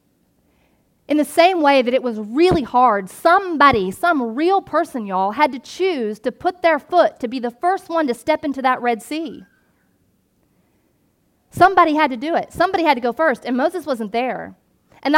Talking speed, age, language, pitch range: 185 wpm, 30-49, English, 255-340 Hz